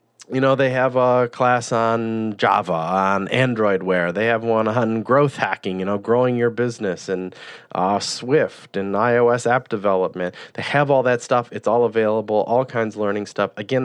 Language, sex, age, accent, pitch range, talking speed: English, male, 30-49, American, 115-160 Hz, 185 wpm